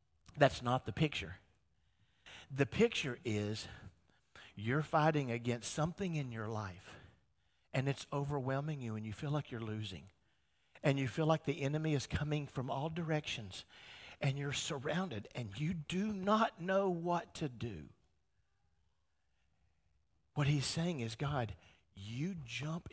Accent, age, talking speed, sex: American, 50-69, 140 wpm, male